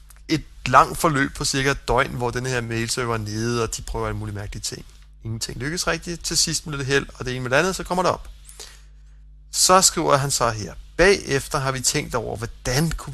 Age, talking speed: 30-49, 225 wpm